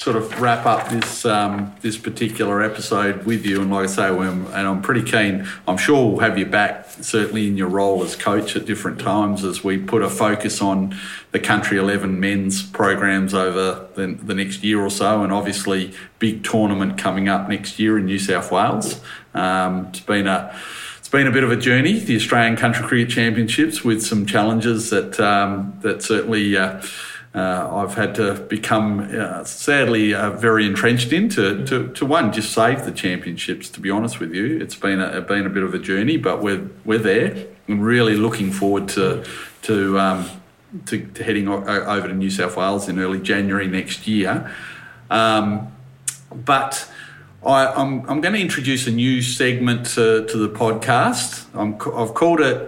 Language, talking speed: English, 190 wpm